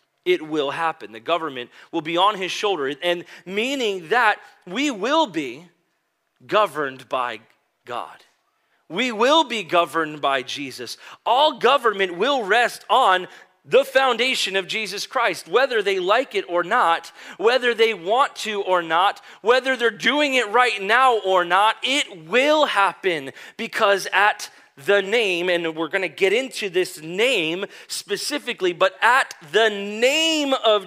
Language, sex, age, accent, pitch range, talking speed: English, male, 30-49, American, 170-250 Hz, 150 wpm